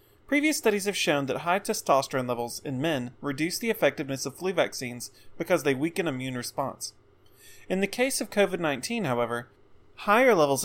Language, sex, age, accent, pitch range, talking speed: English, male, 30-49, American, 125-165 Hz, 165 wpm